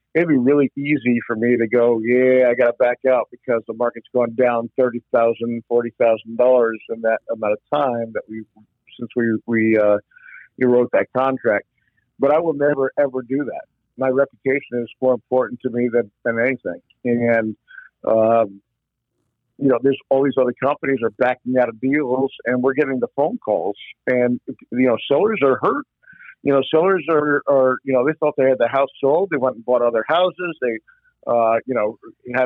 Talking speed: 190 wpm